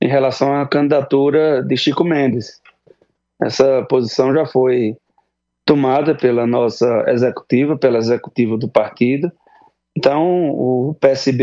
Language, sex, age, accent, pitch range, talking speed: Portuguese, male, 20-39, Brazilian, 125-145 Hz, 115 wpm